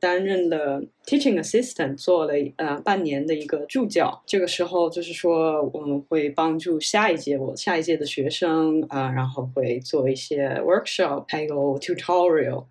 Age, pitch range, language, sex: 20-39, 150-225 Hz, Chinese, female